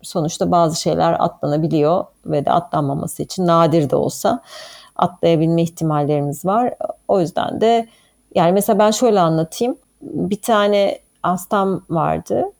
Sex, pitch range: female, 165-230 Hz